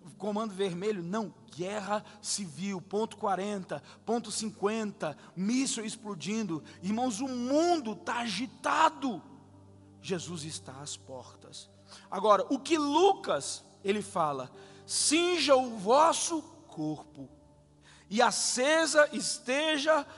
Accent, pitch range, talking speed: Brazilian, 165-255 Hz, 100 wpm